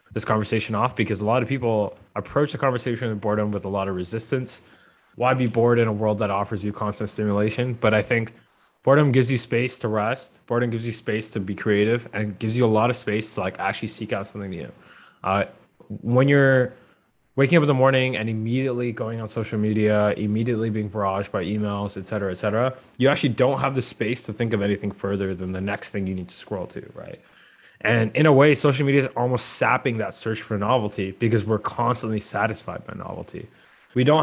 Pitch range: 105-125 Hz